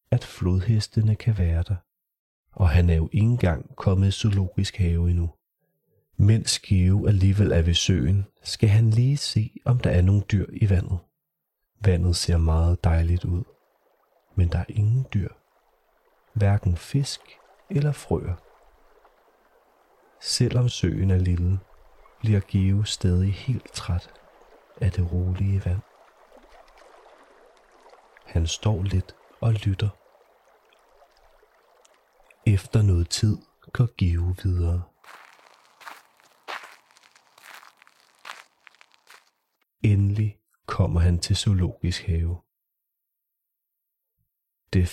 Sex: male